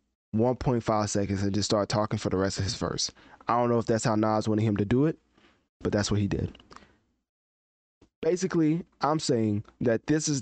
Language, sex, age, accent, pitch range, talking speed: English, male, 20-39, American, 100-125 Hz, 200 wpm